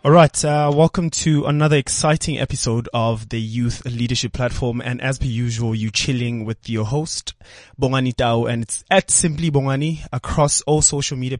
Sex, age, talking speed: male, 20-39, 170 wpm